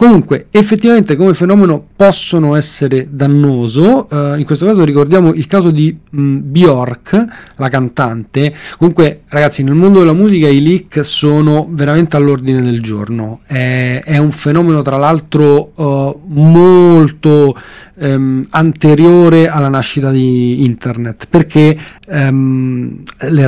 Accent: native